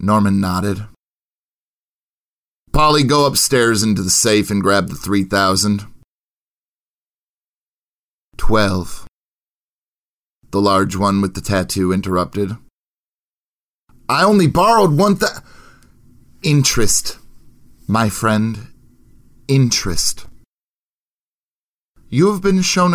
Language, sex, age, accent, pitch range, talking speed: English, male, 30-49, American, 95-135 Hz, 90 wpm